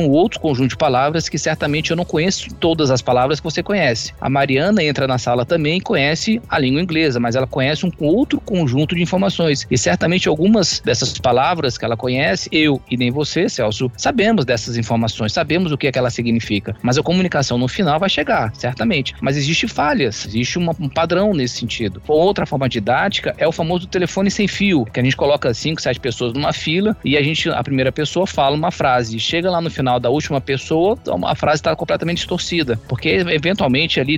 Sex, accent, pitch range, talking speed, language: male, Brazilian, 120-160 Hz, 205 wpm, Portuguese